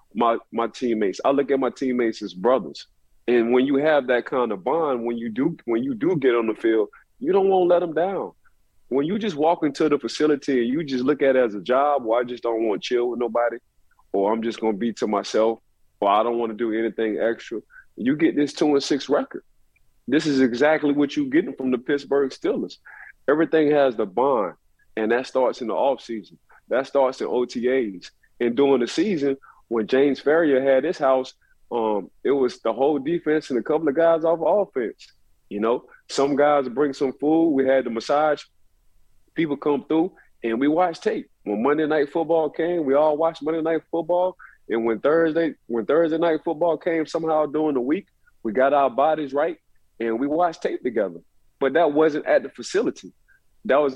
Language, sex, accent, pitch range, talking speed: English, male, American, 120-160 Hz, 215 wpm